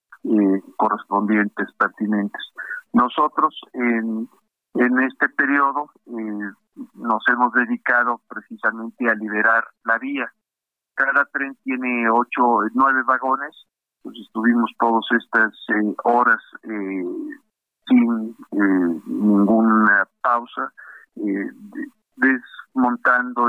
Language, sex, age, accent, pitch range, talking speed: Spanish, male, 50-69, Mexican, 110-130 Hz, 90 wpm